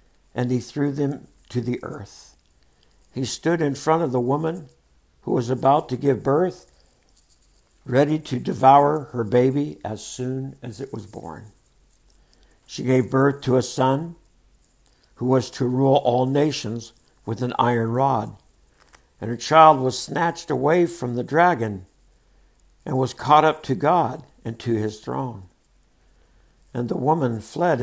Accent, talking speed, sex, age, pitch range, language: American, 150 wpm, male, 60-79, 120-145 Hz, English